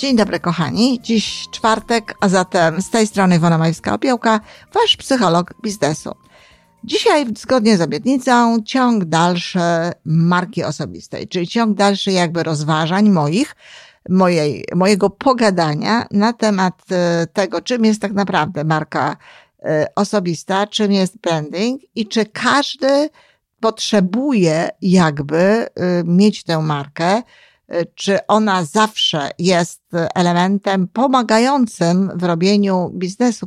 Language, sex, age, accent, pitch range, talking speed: Polish, female, 50-69, native, 170-225 Hz, 115 wpm